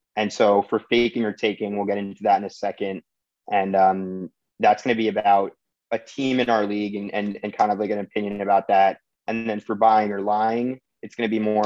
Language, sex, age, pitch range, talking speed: English, male, 30-49, 100-120 Hz, 235 wpm